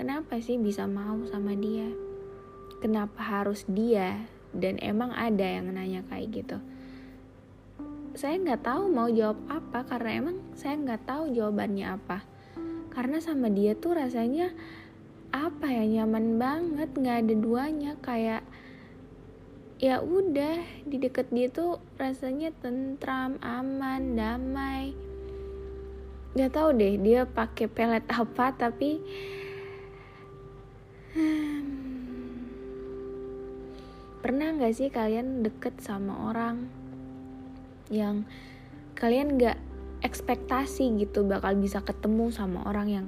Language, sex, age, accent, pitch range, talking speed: Indonesian, female, 10-29, native, 190-250 Hz, 110 wpm